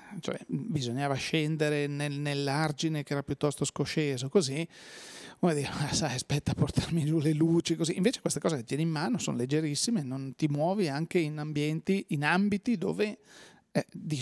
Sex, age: male, 40-59